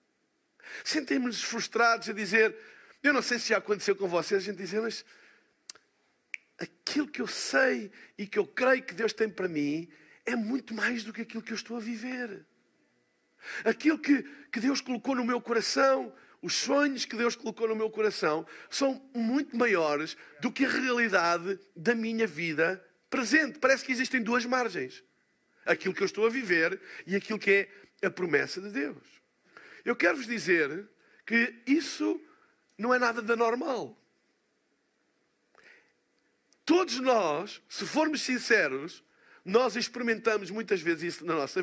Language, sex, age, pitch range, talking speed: Portuguese, male, 50-69, 200-255 Hz, 155 wpm